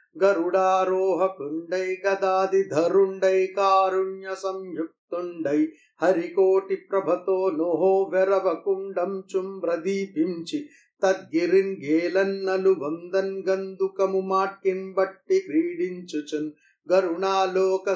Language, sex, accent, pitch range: Telugu, male, native, 165-205 Hz